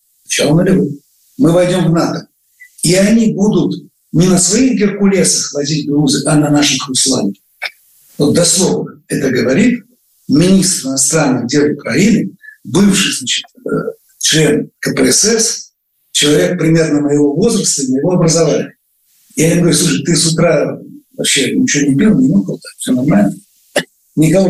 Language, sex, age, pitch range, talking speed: Russian, male, 60-79, 145-205 Hz, 135 wpm